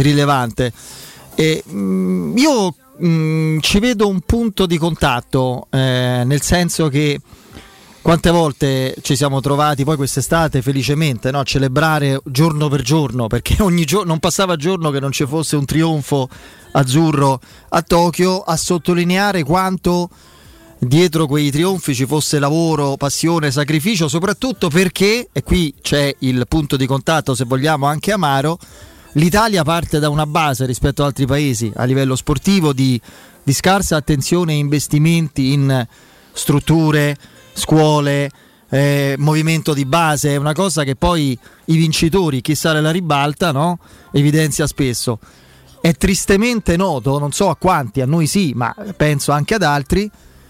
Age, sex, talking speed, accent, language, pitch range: 30-49, male, 140 wpm, native, Italian, 140-170 Hz